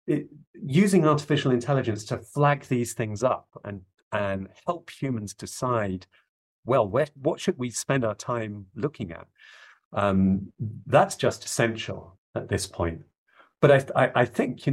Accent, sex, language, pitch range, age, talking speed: British, male, English, 105-140 Hz, 40-59, 150 wpm